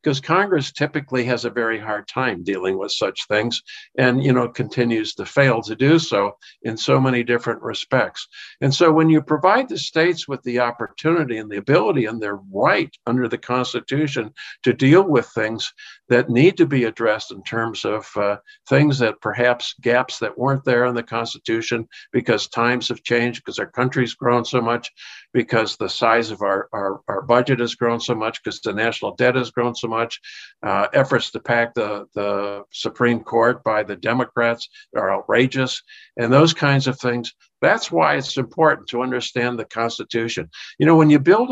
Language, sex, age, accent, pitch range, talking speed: English, male, 50-69, American, 115-135 Hz, 185 wpm